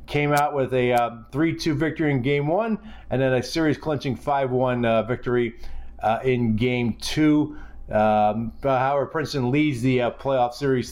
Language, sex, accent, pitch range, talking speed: English, male, American, 115-145 Hz, 155 wpm